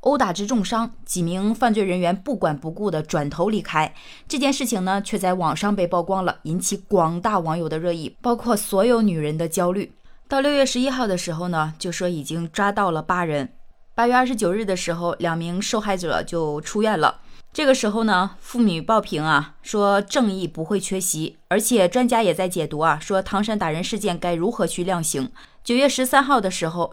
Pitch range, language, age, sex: 175-245 Hz, Chinese, 20-39, female